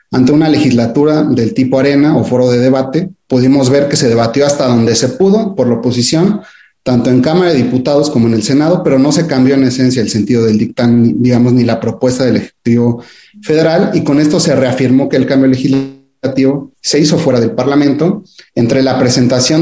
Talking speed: 200 wpm